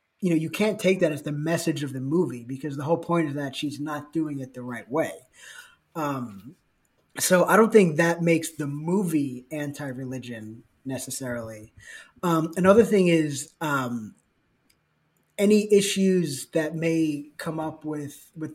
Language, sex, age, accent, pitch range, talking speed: English, male, 20-39, American, 140-175 Hz, 160 wpm